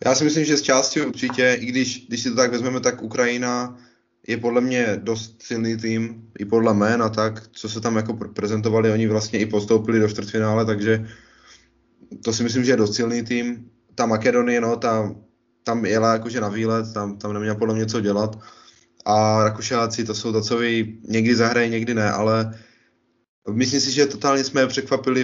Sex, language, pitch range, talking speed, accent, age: male, Czech, 110-120 Hz, 190 wpm, native, 20-39